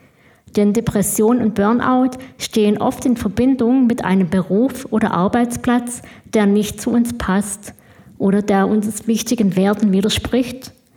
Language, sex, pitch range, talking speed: German, female, 195-230 Hz, 130 wpm